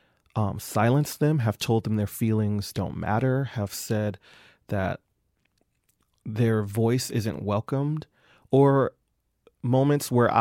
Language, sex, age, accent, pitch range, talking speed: English, male, 30-49, American, 105-120 Hz, 115 wpm